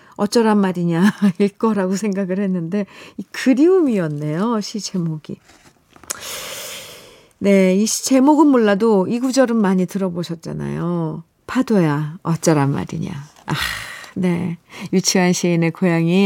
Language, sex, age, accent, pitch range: Korean, female, 40-59, native, 170-225 Hz